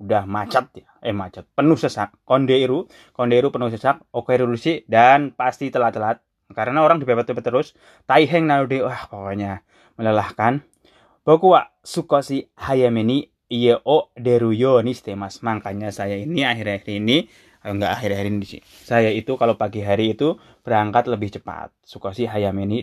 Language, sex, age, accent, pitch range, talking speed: Indonesian, male, 20-39, native, 100-125 Hz, 140 wpm